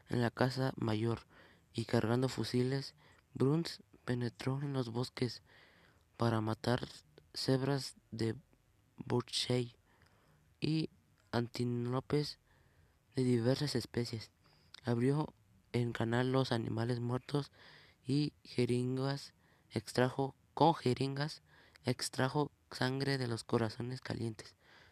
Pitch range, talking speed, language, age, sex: 105-125 Hz, 95 wpm, Spanish, 20-39, male